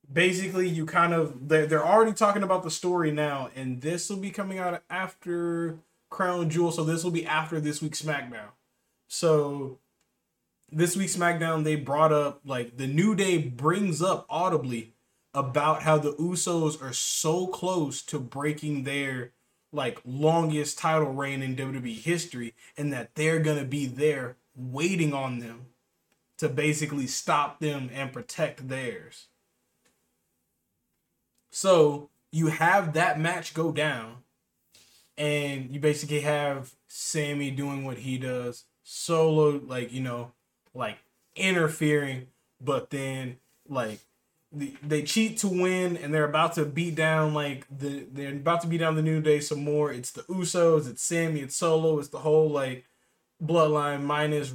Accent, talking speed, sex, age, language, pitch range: American, 150 wpm, male, 20-39, English, 135-165 Hz